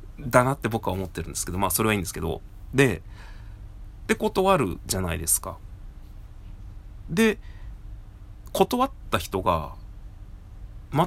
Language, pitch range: Japanese, 95-115 Hz